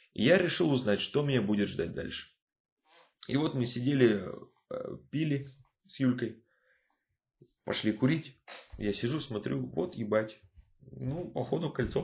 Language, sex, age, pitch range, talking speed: Russian, male, 20-39, 100-130 Hz, 125 wpm